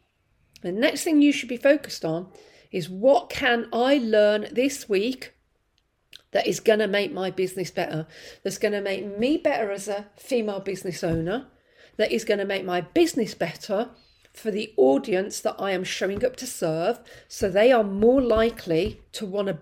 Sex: female